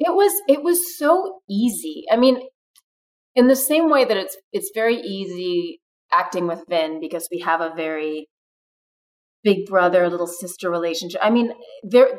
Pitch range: 175-230 Hz